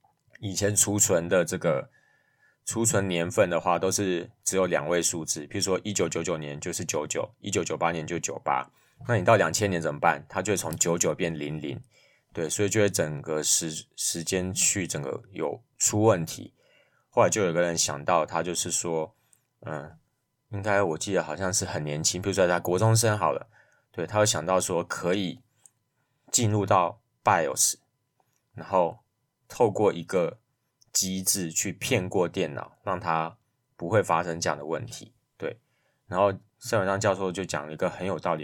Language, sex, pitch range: Chinese, male, 85-110 Hz